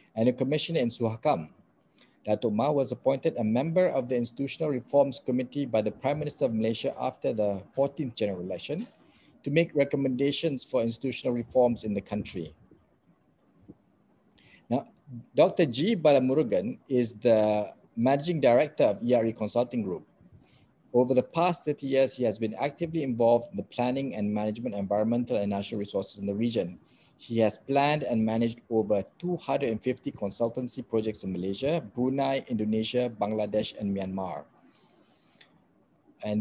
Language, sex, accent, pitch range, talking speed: English, male, Malaysian, 110-140 Hz, 145 wpm